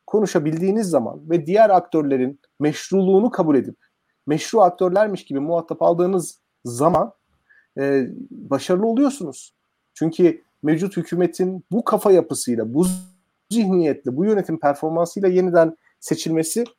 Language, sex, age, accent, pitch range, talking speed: Turkish, male, 40-59, native, 140-185 Hz, 105 wpm